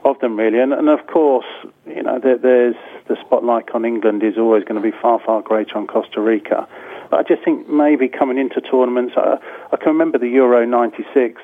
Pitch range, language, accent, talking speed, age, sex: 115-130 Hz, English, British, 205 wpm, 40-59, male